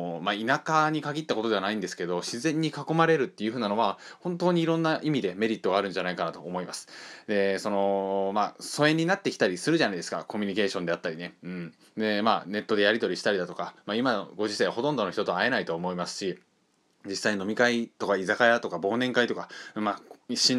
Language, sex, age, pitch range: Japanese, male, 20-39, 105-135 Hz